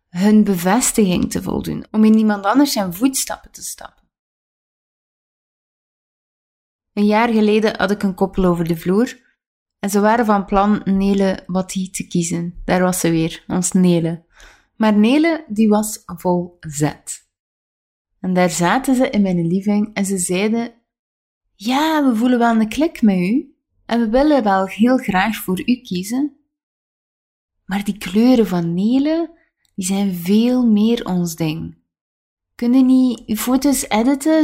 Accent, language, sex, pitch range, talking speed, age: Dutch, Dutch, female, 175-235 Hz, 150 wpm, 20-39